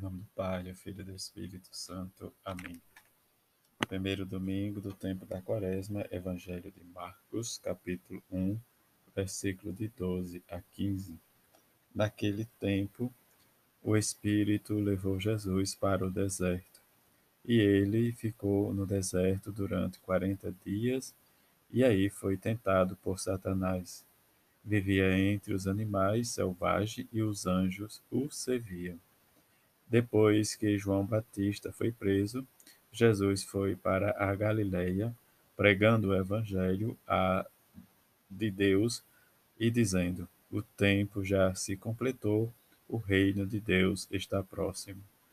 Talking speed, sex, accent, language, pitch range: 120 wpm, male, Brazilian, Portuguese, 95-105 Hz